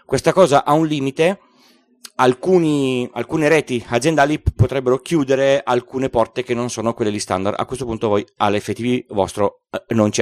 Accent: native